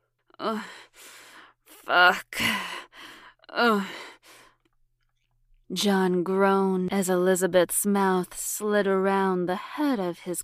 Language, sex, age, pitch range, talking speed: English, female, 20-39, 175-195 Hz, 75 wpm